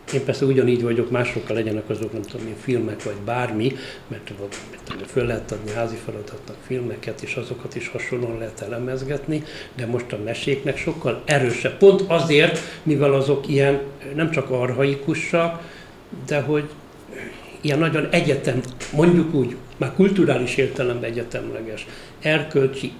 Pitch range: 125-155 Hz